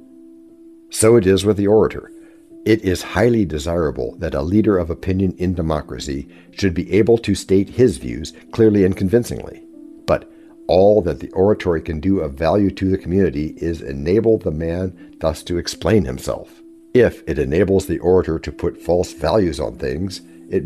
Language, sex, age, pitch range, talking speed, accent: English, male, 60-79, 85-110 Hz, 170 wpm, American